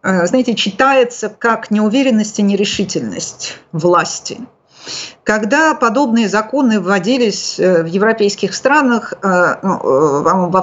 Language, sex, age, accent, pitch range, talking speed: Russian, female, 50-69, native, 175-230 Hz, 85 wpm